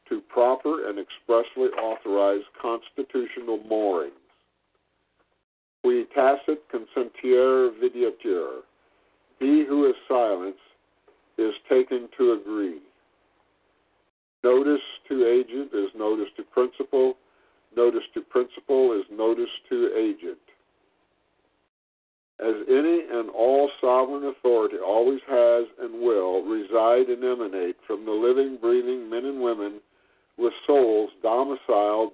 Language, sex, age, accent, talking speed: English, male, 50-69, American, 105 wpm